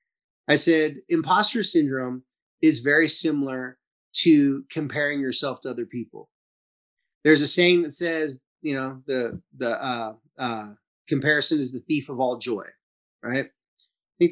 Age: 30-49